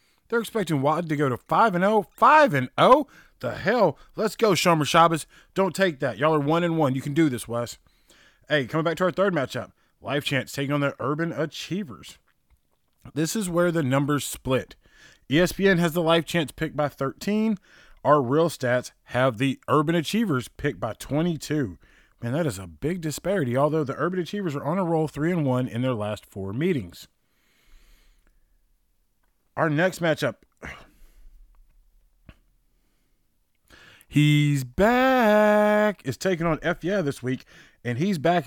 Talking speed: 160 wpm